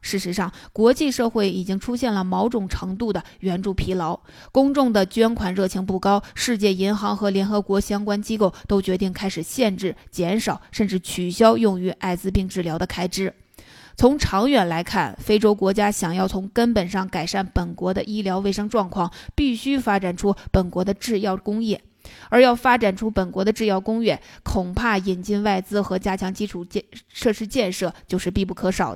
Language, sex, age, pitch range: Chinese, female, 20-39, 185-225 Hz